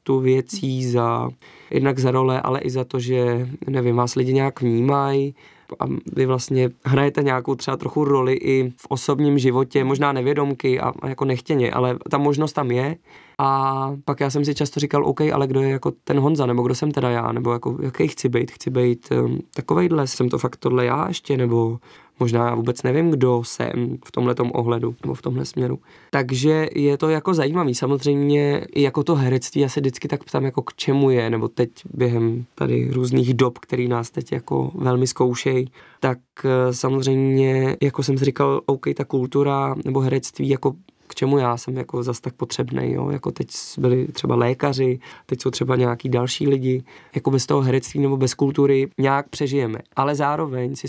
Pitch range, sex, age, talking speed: 125-140 Hz, male, 20-39, 185 wpm